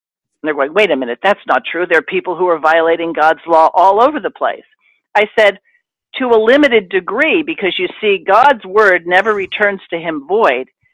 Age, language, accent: 50-69, English, American